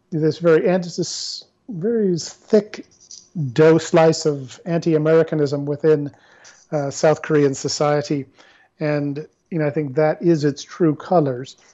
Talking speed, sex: 130 wpm, male